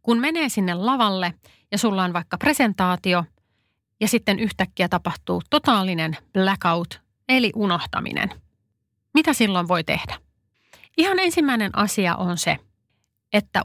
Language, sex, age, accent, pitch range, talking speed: Finnish, female, 30-49, native, 180-245 Hz, 120 wpm